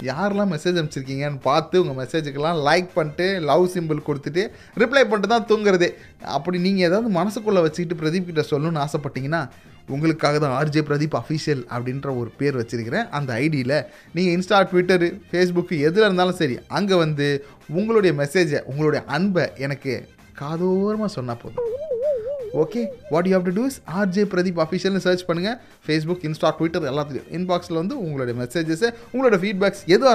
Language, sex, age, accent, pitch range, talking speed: Tamil, male, 30-49, native, 145-195 Hz, 145 wpm